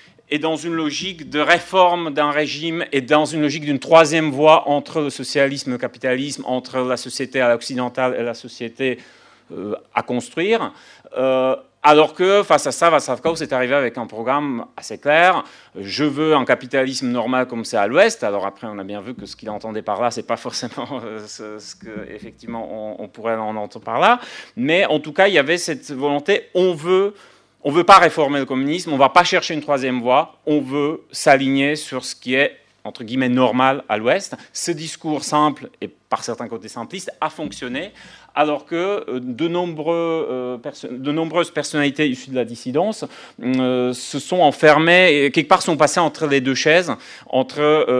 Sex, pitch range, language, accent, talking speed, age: male, 125-155 Hz, French, French, 190 wpm, 30-49